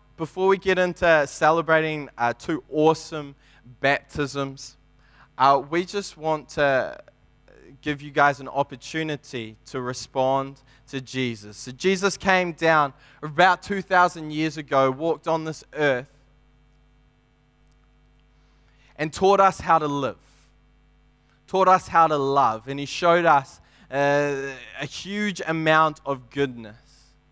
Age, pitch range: 20-39, 140-170 Hz